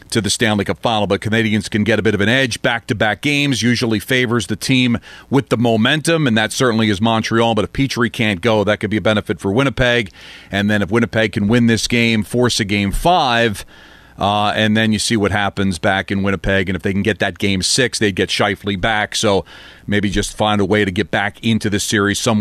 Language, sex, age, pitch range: English, male, 40-59, 105-125 Hz